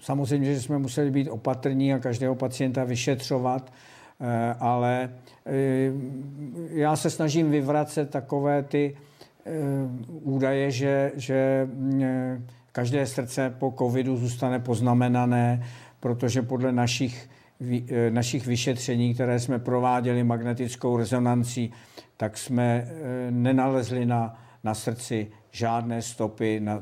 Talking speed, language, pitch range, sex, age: 100 wpm, Czech, 115-130 Hz, male, 60-79